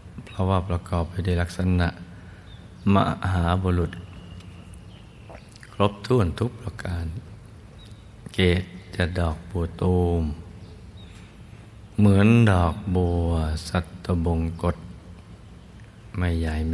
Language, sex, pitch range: Thai, male, 85-100 Hz